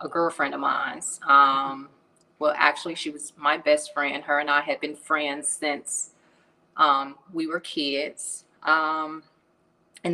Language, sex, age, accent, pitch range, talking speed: English, female, 30-49, American, 145-165 Hz, 150 wpm